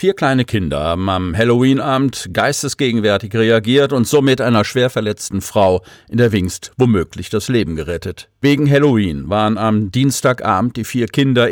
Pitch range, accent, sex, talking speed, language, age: 105-130 Hz, German, male, 150 wpm, German, 50-69